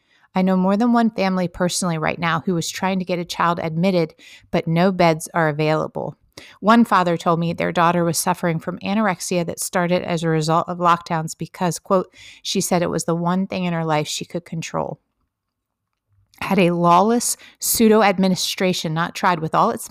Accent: American